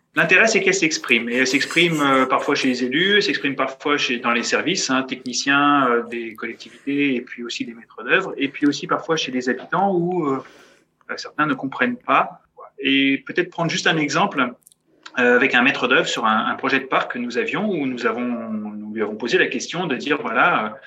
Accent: French